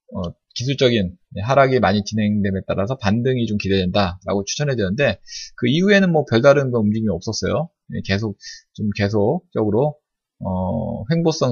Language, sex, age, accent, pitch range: Korean, male, 20-39, native, 100-135 Hz